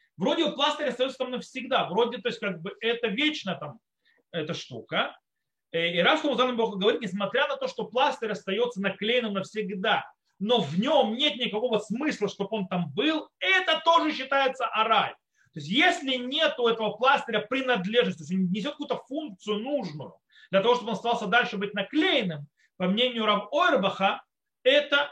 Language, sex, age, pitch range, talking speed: Russian, male, 30-49, 180-250 Hz, 160 wpm